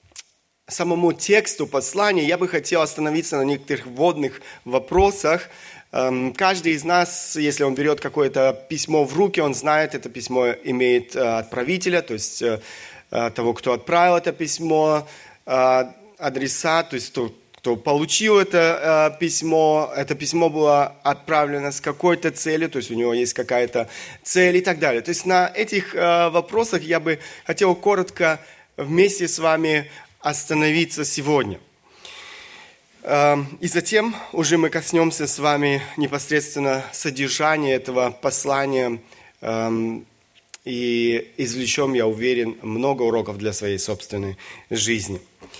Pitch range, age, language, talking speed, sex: 130-165 Hz, 30-49, Russian, 125 wpm, male